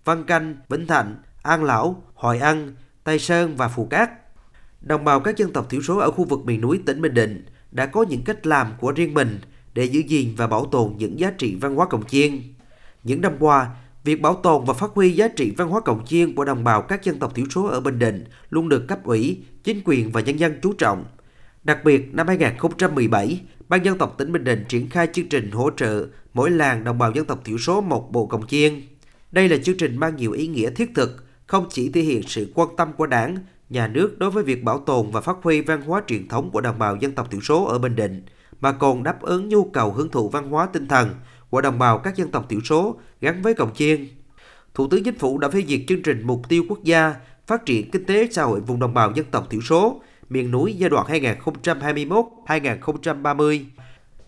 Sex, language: male, Vietnamese